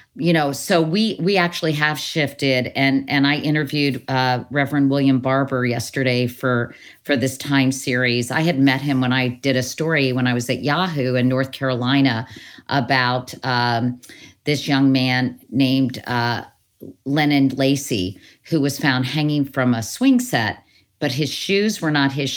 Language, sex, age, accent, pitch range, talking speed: English, female, 50-69, American, 130-155 Hz, 165 wpm